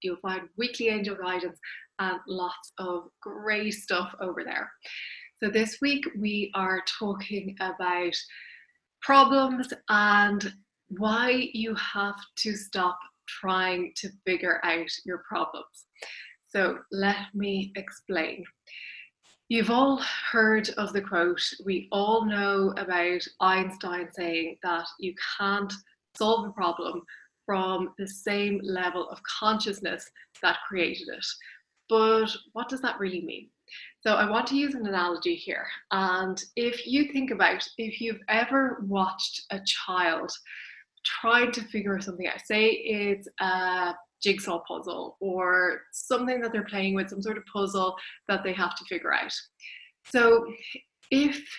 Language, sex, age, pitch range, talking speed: English, female, 20-39, 185-230 Hz, 135 wpm